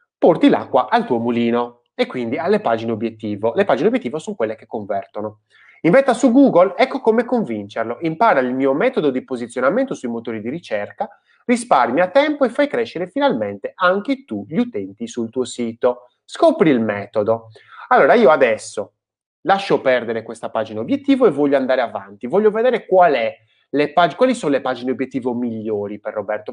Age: 30-49